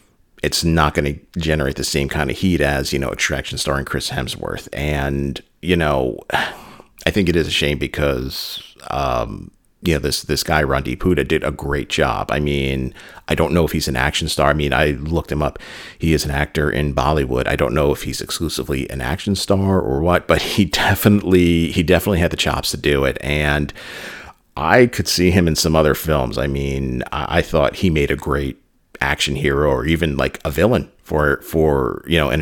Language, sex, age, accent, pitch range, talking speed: English, male, 40-59, American, 70-85 Hz, 210 wpm